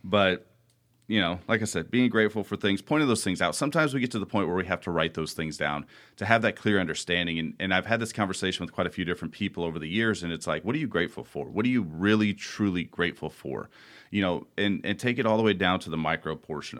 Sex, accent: male, American